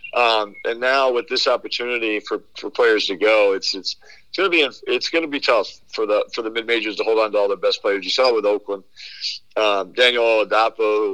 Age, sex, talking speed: 50-69, male, 225 wpm